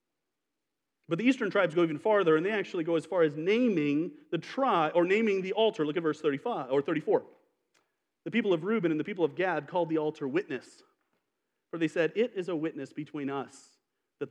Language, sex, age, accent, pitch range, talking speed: English, male, 40-59, American, 155-220 Hz, 210 wpm